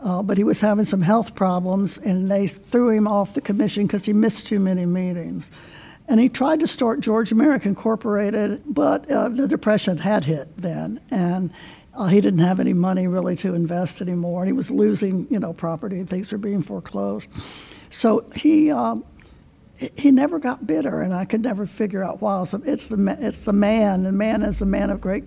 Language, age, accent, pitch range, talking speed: English, 60-79, American, 190-235 Hz, 205 wpm